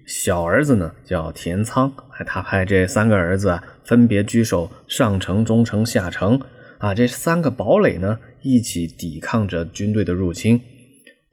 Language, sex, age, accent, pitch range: Chinese, male, 20-39, native, 95-130 Hz